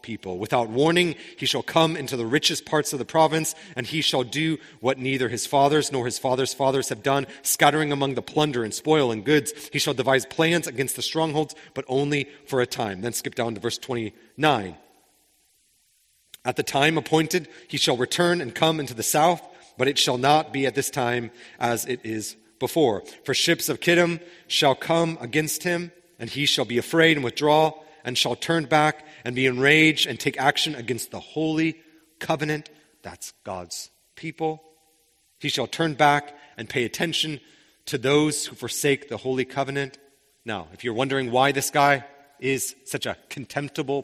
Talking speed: 180 wpm